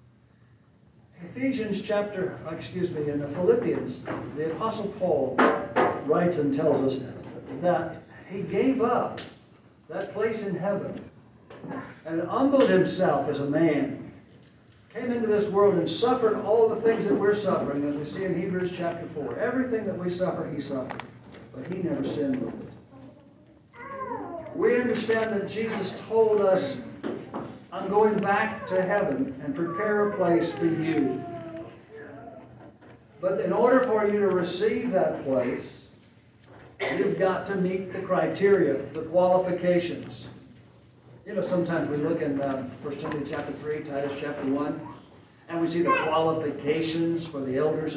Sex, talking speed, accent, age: male, 145 wpm, American, 60-79